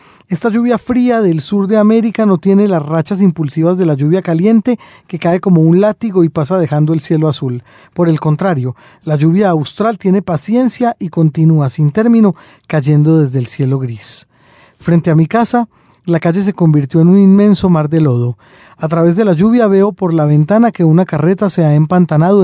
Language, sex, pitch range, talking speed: Spanish, male, 150-195 Hz, 195 wpm